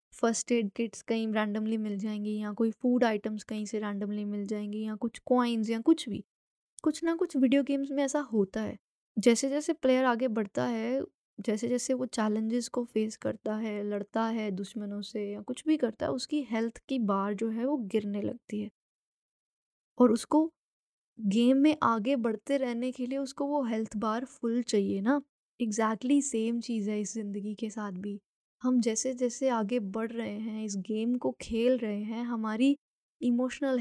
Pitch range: 220-265 Hz